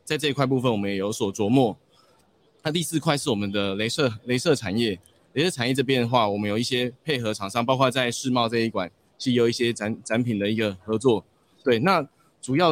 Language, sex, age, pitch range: Chinese, male, 20-39, 115-145 Hz